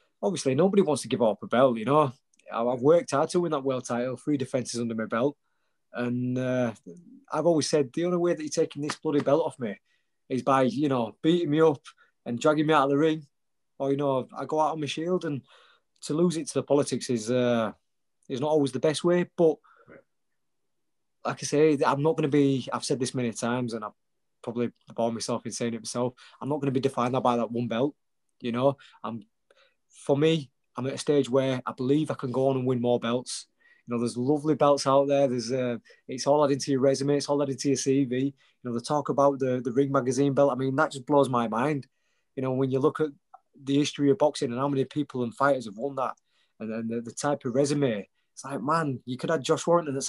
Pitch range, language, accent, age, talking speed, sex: 125-150 Hz, English, British, 20-39, 245 wpm, male